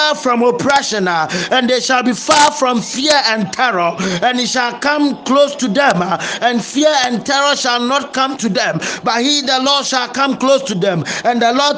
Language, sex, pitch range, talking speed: English, male, 235-280 Hz, 200 wpm